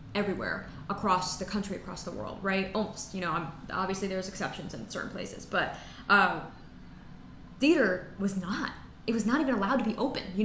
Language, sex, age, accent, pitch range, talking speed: English, female, 10-29, American, 195-240 Hz, 190 wpm